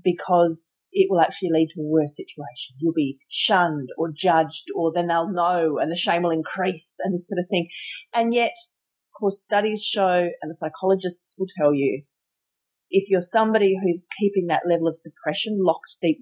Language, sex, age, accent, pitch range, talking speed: English, female, 40-59, Australian, 165-205 Hz, 190 wpm